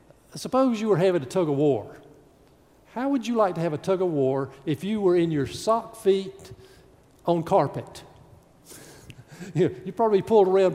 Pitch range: 145-225 Hz